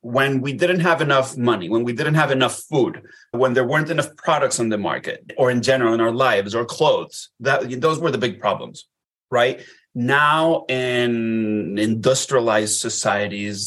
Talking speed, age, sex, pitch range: 170 wpm, 30-49, male, 105-135 Hz